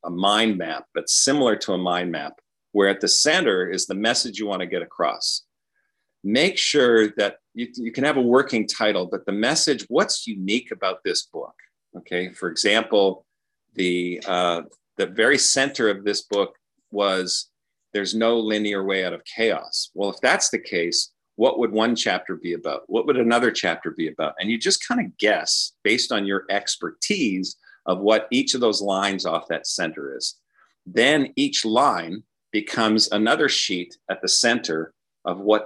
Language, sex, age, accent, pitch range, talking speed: English, male, 40-59, American, 90-115 Hz, 175 wpm